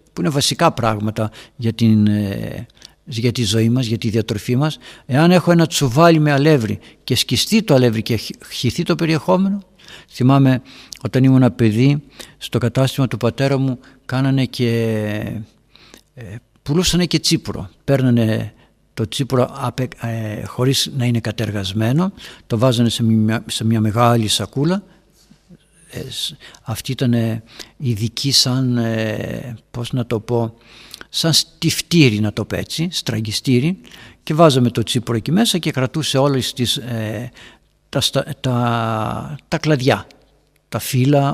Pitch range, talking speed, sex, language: 115-145 Hz, 130 wpm, male, Greek